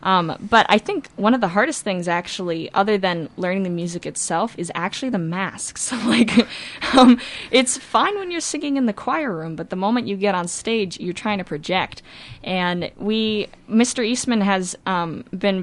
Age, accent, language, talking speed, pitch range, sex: 20-39, American, English, 190 wpm, 180-235 Hz, female